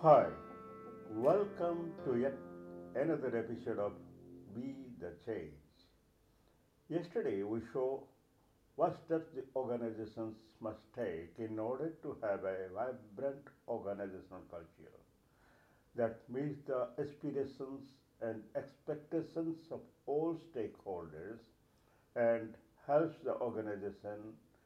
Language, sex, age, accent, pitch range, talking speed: English, male, 60-79, Indian, 110-150 Hz, 95 wpm